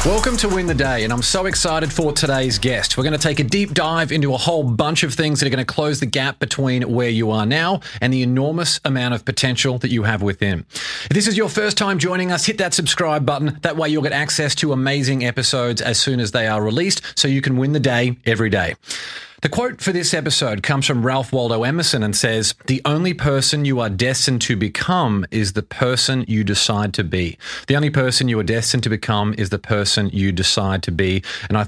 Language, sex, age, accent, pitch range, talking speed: English, male, 30-49, Australian, 115-155 Hz, 235 wpm